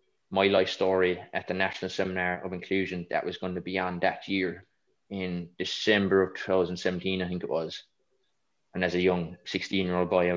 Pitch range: 90-95 Hz